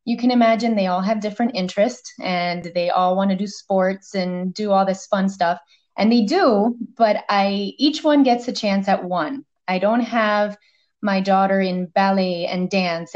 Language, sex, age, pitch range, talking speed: English, female, 20-39, 190-235 Hz, 190 wpm